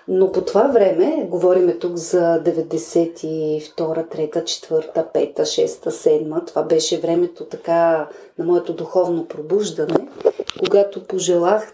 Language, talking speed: Bulgarian, 120 wpm